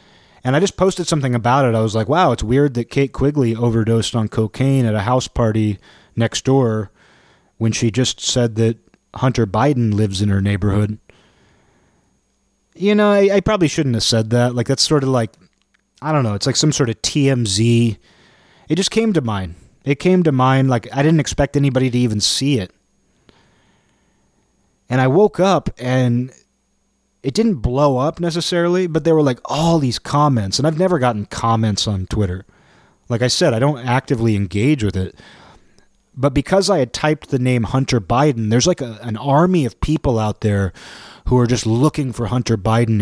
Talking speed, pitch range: 185 wpm, 110-145 Hz